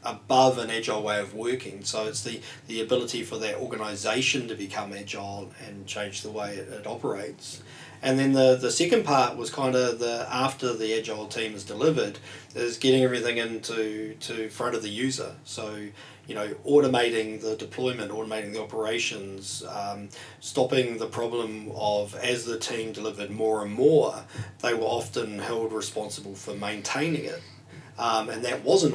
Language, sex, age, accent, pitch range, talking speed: English, male, 40-59, Australian, 105-120 Hz, 170 wpm